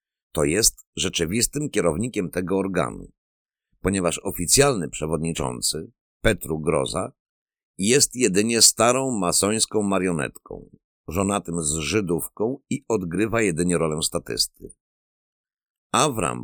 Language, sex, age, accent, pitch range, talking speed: Polish, male, 50-69, native, 85-110 Hz, 90 wpm